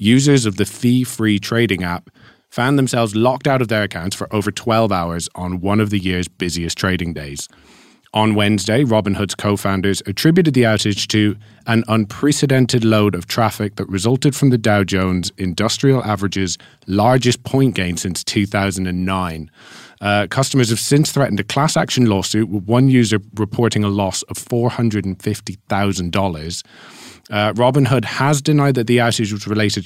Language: English